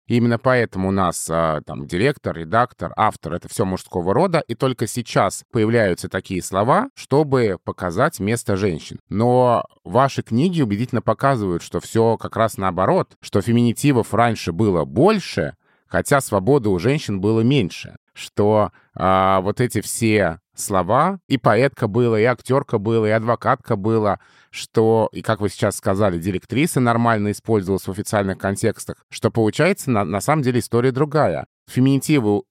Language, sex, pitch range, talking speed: Russian, male, 100-125 Hz, 145 wpm